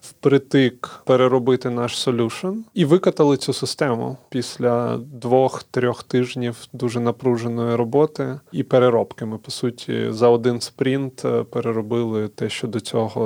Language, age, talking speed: Ukrainian, 20-39, 120 wpm